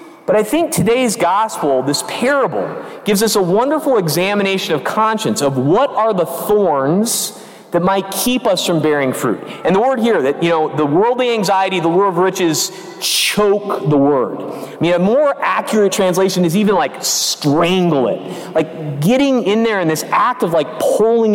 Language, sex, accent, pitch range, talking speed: English, male, American, 170-230 Hz, 180 wpm